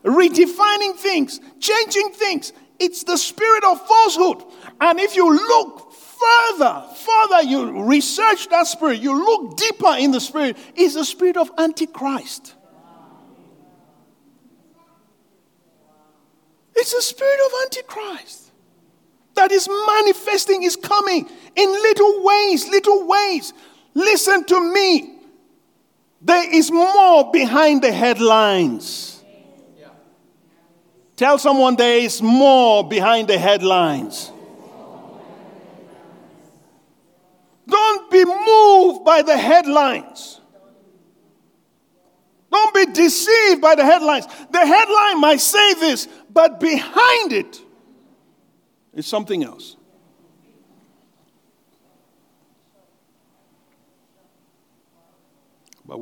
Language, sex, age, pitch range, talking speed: English, male, 50-69, 275-400 Hz, 90 wpm